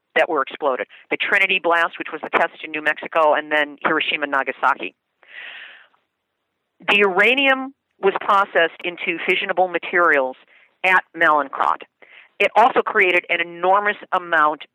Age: 50-69